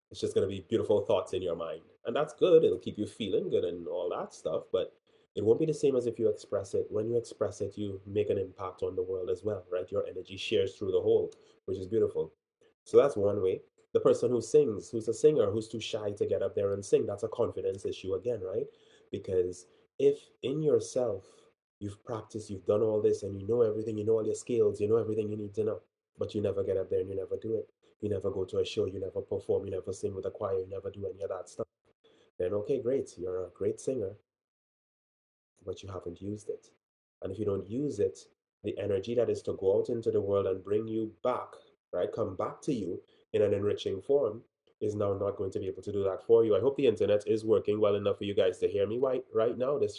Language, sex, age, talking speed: English, male, 20-39, 255 wpm